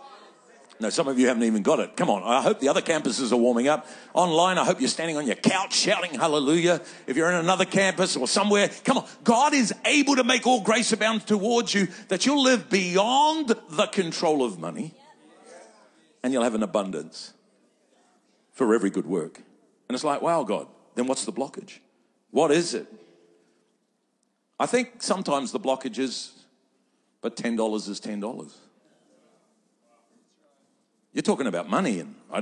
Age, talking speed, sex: 50-69, 170 wpm, male